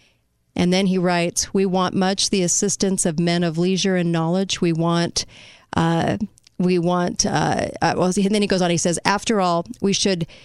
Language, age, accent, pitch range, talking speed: English, 40-59, American, 165-190 Hz, 190 wpm